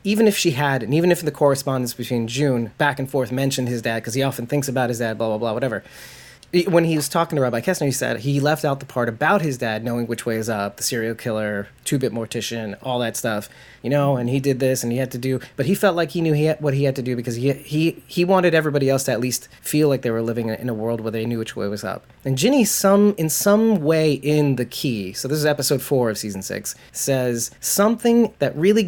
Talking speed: 265 wpm